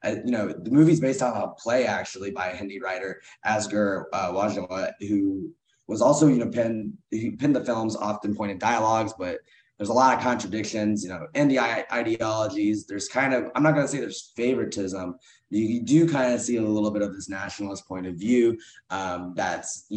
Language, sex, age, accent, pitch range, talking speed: English, male, 20-39, American, 100-125 Hz, 205 wpm